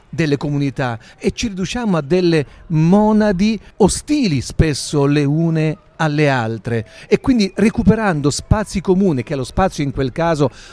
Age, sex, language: 40-59, male, Italian